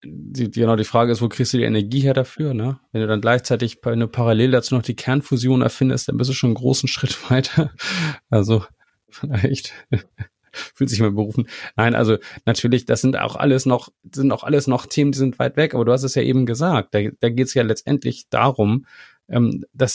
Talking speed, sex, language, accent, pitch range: 210 wpm, male, German, German, 110-130 Hz